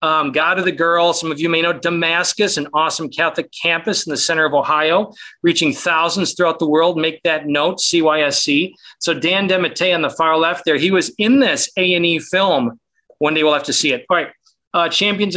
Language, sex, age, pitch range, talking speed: English, male, 40-59, 155-185 Hz, 215 wpm